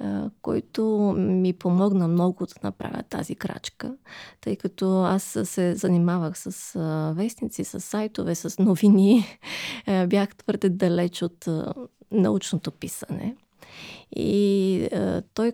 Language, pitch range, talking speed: Bulgarian, 175-210 Hz, 105 wpm